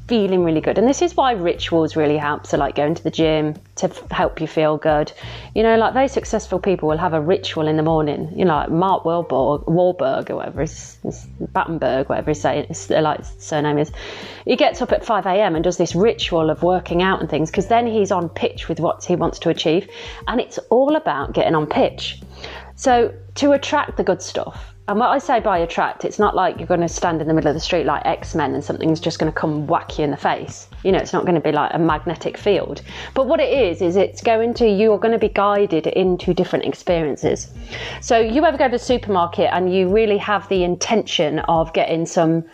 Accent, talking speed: British, 230 wpm